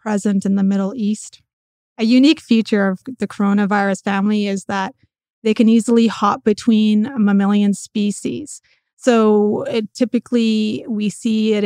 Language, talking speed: English, 135 wpm